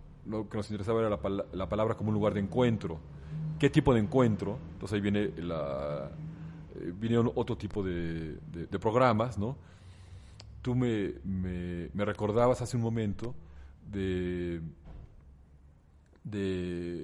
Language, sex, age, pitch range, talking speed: Spanish, male, 40-59, 90-110 Hz, 125 wpm